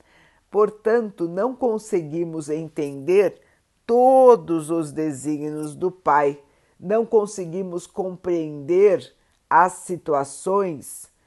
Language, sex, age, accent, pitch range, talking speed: Portuguese, female, 50-69, Brazilian, 145-200 Hz, 75 wpm